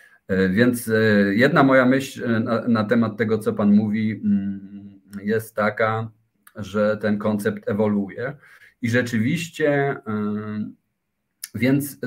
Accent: native